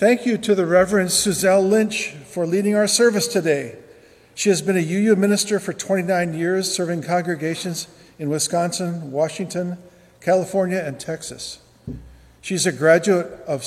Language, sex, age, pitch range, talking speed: English, male, 50-69, 145-185 Hz, 145 wpm